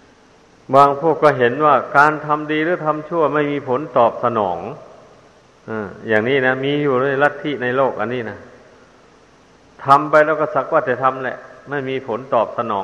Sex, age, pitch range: male, 60-79, 130-150 Hz